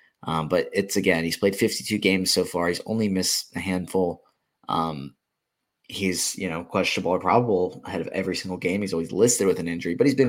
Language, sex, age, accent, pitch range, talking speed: English, male, 20-39, American, 85-105 Hz, 210 wpm